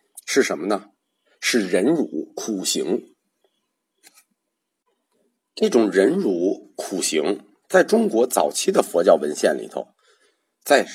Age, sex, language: 50-69, male, Chinese